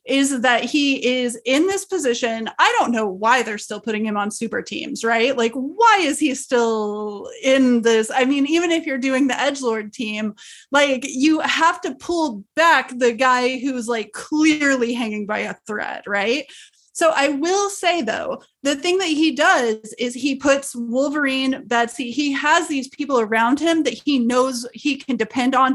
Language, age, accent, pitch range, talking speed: English, 30-49, American, 230-295 Hz, 185 wpm